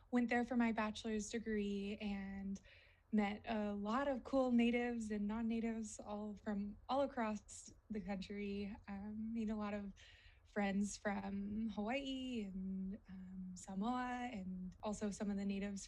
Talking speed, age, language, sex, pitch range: 145 wpm, 20-39, English, female, 195-225 Hz